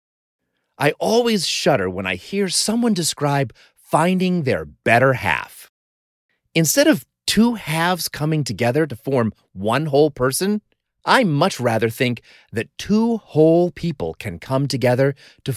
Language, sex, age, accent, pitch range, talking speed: English, male, 30-49, American, 115-185 Hz, 135 wpm